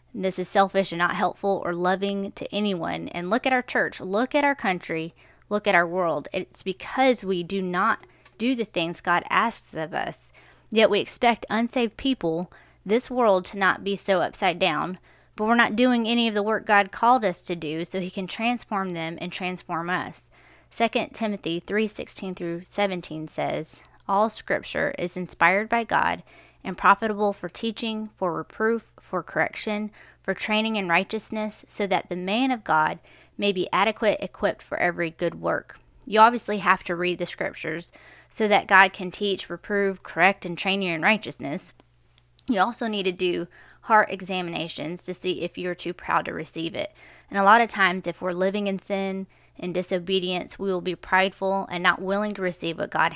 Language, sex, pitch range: English, female, 175-215 Hz